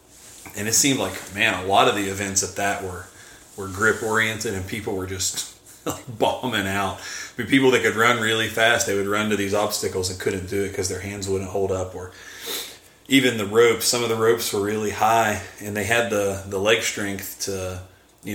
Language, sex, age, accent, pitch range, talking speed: English, male, 30-49, American, 95-115 Hz, 215 wpm